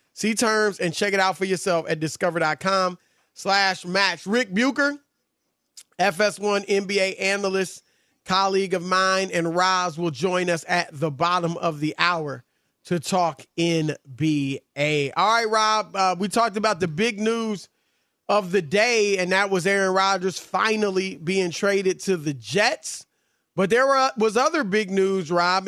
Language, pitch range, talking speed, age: English, 175-205 Hz, 150 wpm, 30-49